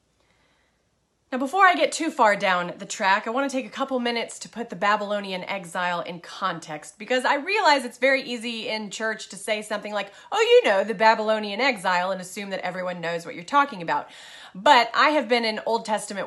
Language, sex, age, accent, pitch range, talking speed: English, female, 30-49, American, 195-270 Hz, 210 wpm